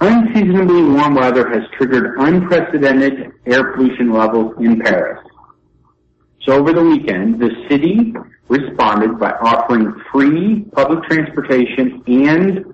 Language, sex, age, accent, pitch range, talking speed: English, male, 50-69, American, 105-145 Hz, 115 wpm